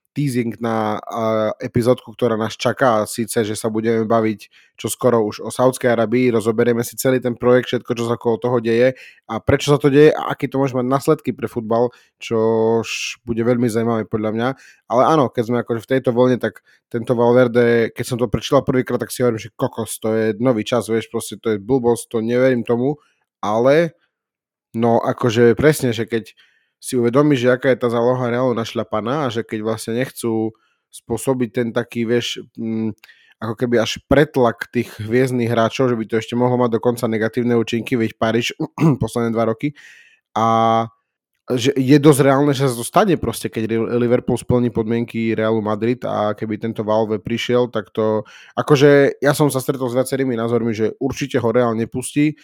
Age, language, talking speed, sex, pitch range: 20-39, Slovak, 185 wpm, male, 115-130 Hz